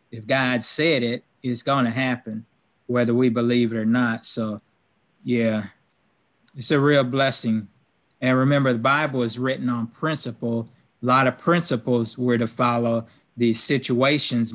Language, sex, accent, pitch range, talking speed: English, male, American, 115-135 Hz, 150 wpm